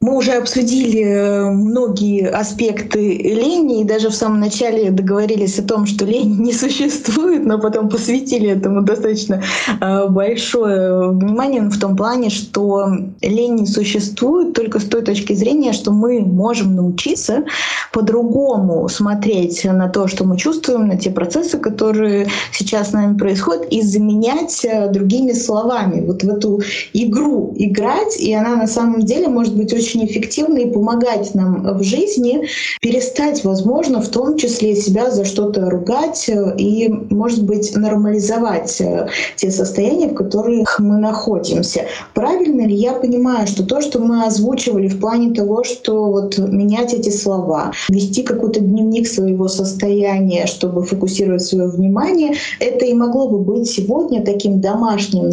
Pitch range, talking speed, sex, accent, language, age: 200-240 Hz, 145 wpm, female, native, Russian, 20-39